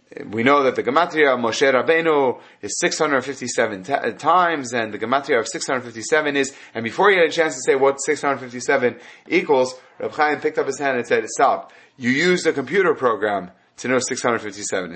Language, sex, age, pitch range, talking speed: English, male, 30-49, 120-165 Hz, 185 wpm